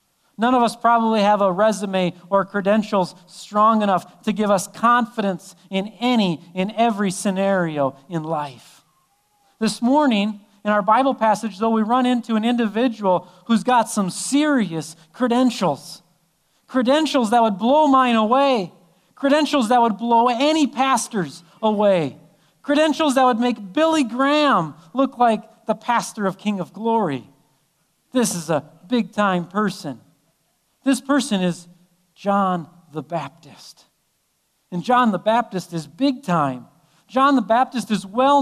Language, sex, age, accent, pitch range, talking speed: English, male, 40-59, American, 180-245 Hz, 140 wpm